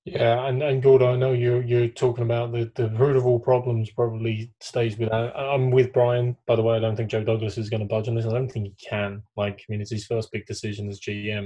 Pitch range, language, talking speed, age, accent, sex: 115-140 Hz, English, 270 wpm, 20-39, British, male